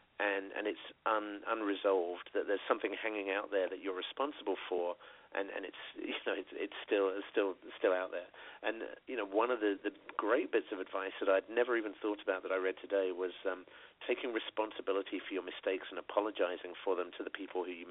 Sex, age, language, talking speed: male, 40-59, English, 220 wpm